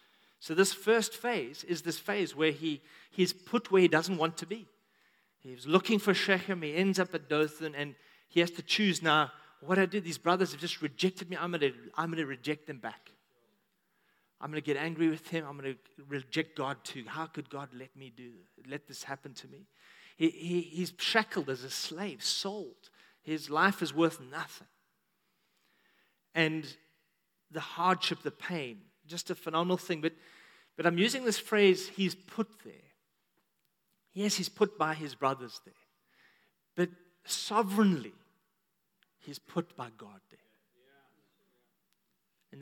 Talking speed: 165 wpm